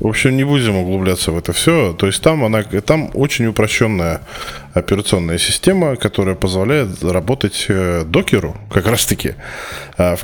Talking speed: 140 wpm